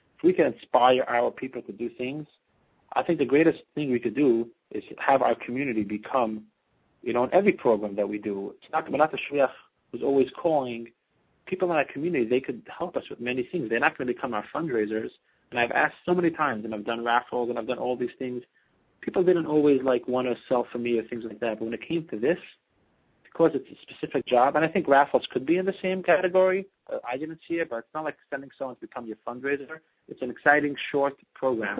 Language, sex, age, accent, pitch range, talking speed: English, male, 40-59, American, 120-155 Hz, 235 wpm